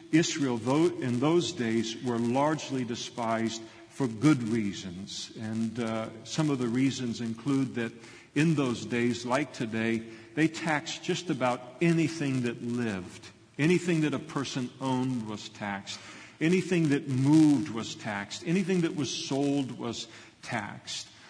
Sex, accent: male, American